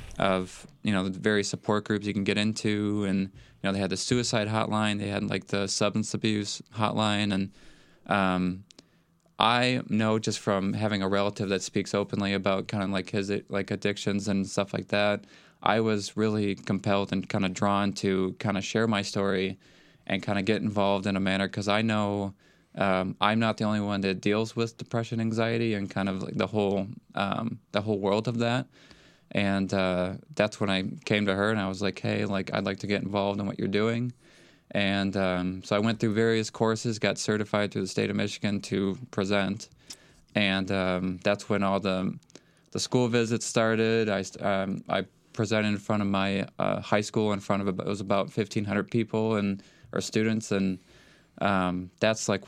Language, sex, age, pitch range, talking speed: English, male, 20-39, 95-110 Hz, 200 wpm